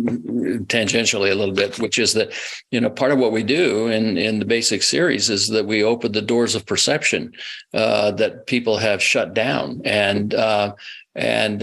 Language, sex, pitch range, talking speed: English, male, 105-125 Hz, 185 wpm